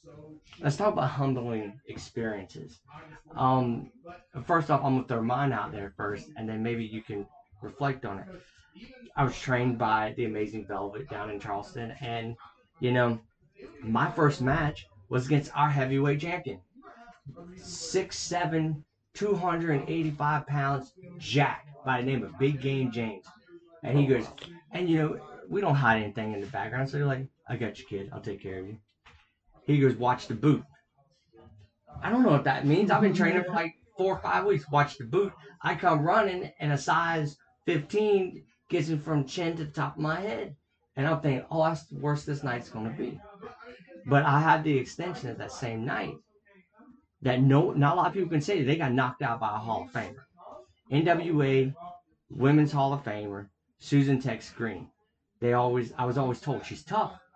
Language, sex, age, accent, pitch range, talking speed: English, male, 20-39, American, 120-160 Hz, 185 wpm